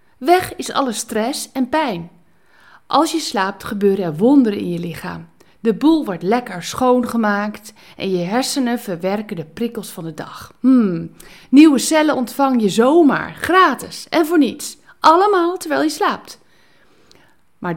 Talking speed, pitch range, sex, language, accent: 150 wpm, 175-260 Hz, female, Dutch, Dutch